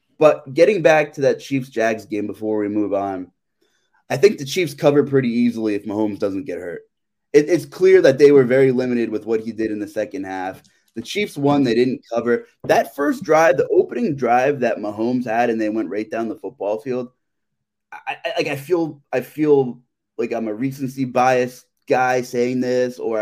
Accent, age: American, 20-39